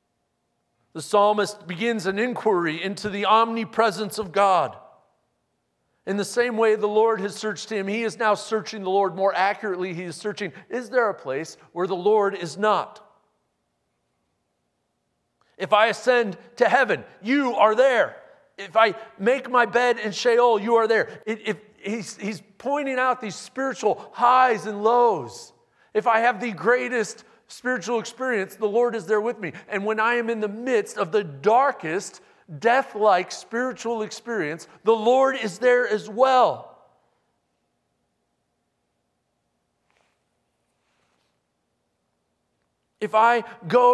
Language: English